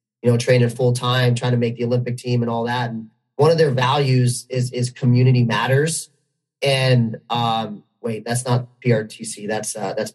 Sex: male